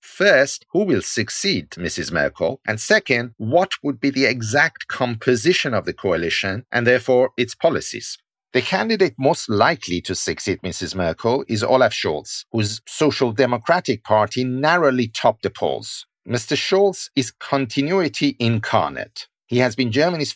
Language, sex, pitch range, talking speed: English, male, 110-145 Hz, 145 wpm